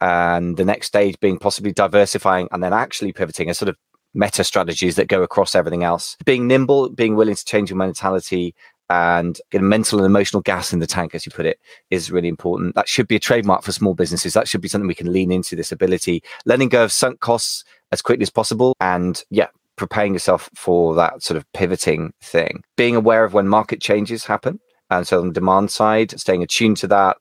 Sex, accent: male, British